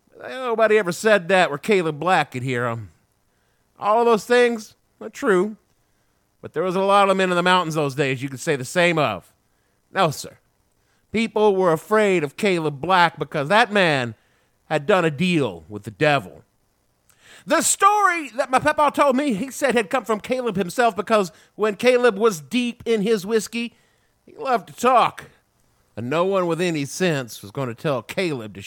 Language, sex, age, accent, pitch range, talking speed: English, male, 50-69, American, 150-225 Hz, 190 wpm